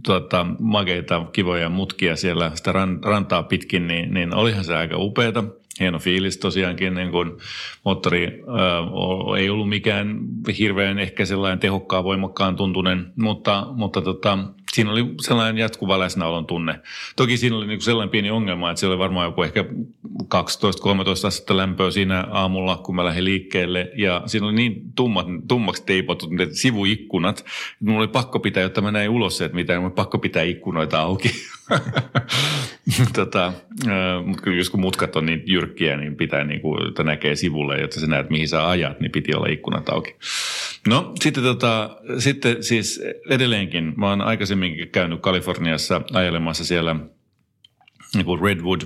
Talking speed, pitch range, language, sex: 150 wpm, 90-110 Hz, Finnish, male